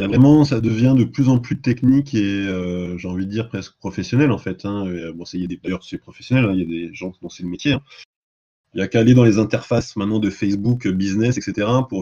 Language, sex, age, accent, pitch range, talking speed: French, male, 20-39, French, 110-140 Hz, 265 wpm